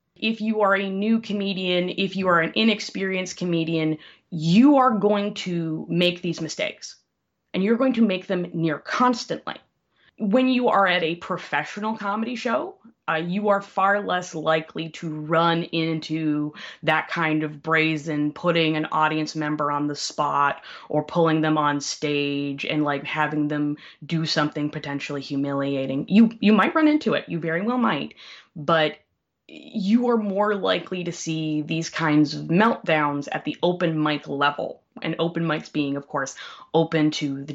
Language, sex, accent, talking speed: English, female, American, 165 wpm